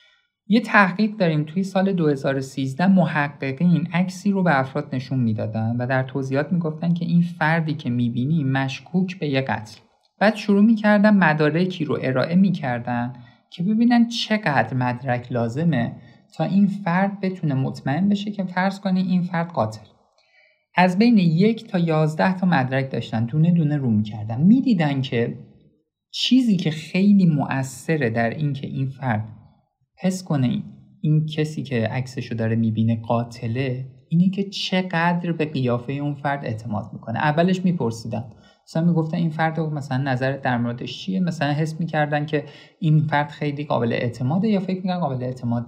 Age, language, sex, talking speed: 50-69, Persian, male, 155 wpm